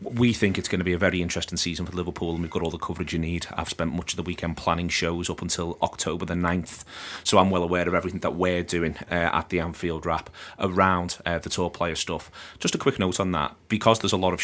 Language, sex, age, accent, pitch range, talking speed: English, male, 30-49, British, 85-95 Hz, 265 wpm